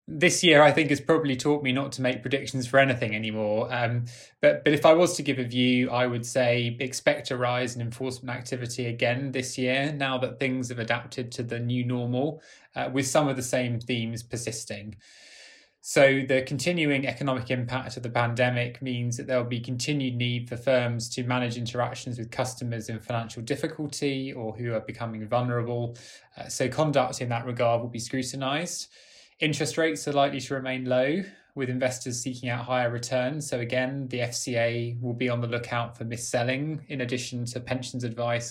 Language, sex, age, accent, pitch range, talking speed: English, male, 20-39, British, 120-135 Hz, 190 wpm